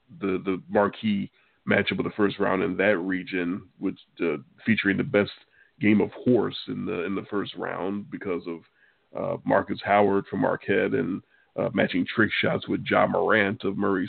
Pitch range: 100-130 Hz